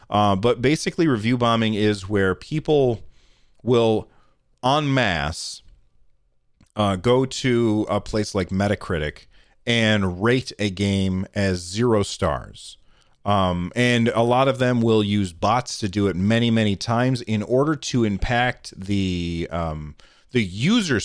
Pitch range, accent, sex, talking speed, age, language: 95-125 Hz, American, male, 135 wpm, 30-49, English